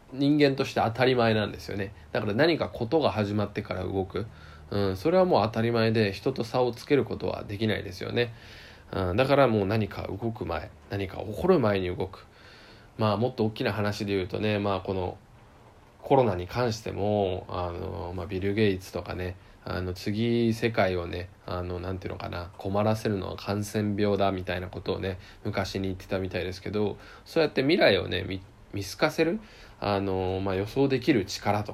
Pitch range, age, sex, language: 95-115 Hz, 20-39, male, Japanese